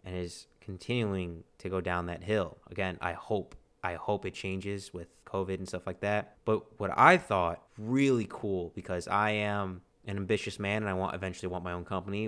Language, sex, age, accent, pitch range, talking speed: English, male, 20-39, American, 95-120 Hz, 200 wpm